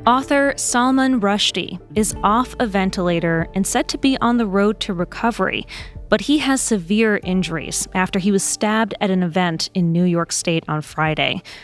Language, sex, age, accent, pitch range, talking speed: English, female, 20-39, American, 180-230 Hz, 175 wpm